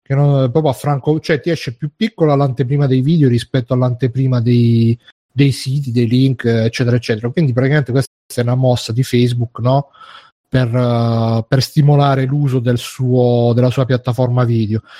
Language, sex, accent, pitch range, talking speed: Italian, male, native, 125-150 Hz, 165 wpm